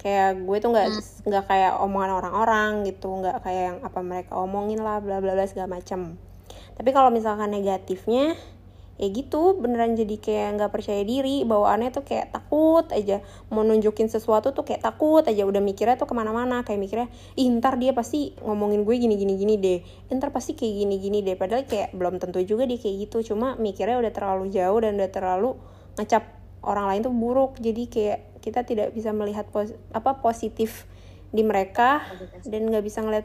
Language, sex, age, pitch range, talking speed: Indonesian, female, 20-39, 200-235 Hz, 175 wpm